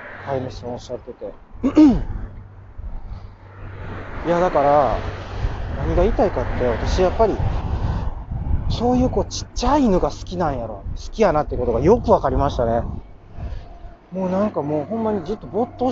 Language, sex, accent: Japanese, male, native